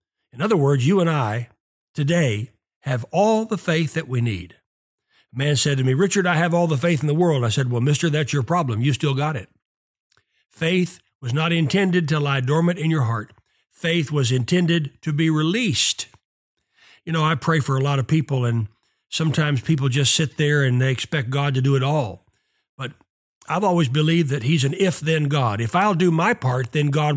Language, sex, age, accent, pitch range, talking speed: English, male, 60-79, American, 130-175 Hz, 210 wpm